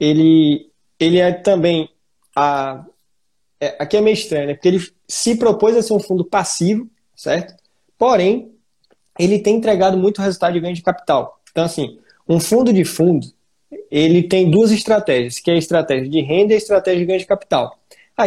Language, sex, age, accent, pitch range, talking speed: Portuguese, male, 20-39, Brazilian, 150-190 Hz, 180 wpm